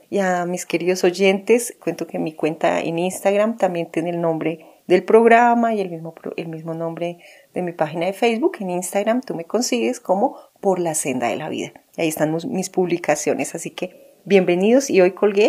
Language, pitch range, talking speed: Spanish, 170-220 Hz, 195 wpm